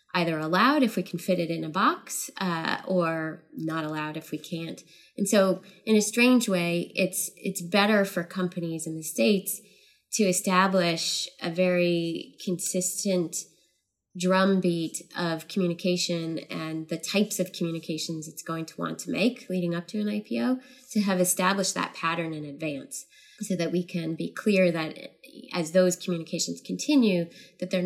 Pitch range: 160-195 Hz